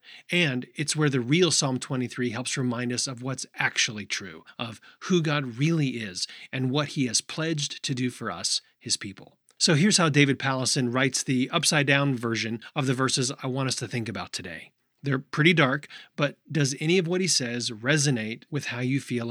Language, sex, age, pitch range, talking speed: English, male, 30-49, 125-160 Hz, 200 wpm